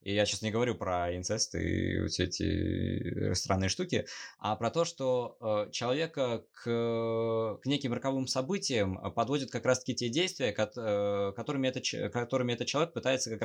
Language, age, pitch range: Russian, 20-39, 100-125 Hz